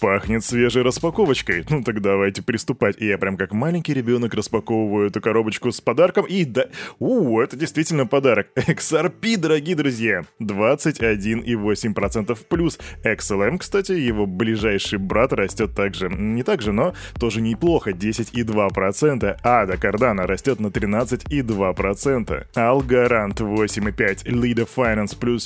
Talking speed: 125 wpm